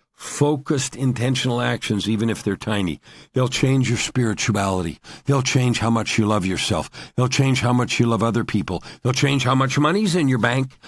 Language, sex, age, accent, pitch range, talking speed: English, male, 50-69, American, 110-135 Hz, 190 wpm